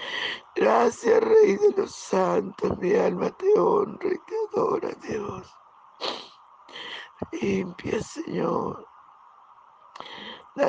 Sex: male